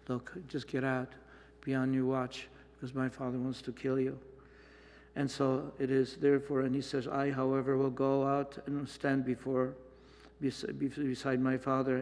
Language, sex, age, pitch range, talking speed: English, male, 60-79, 125-135 Hz, 170 wpm